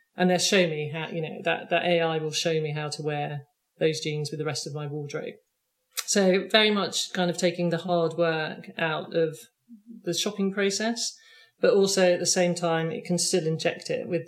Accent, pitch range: British, 160-180 Hz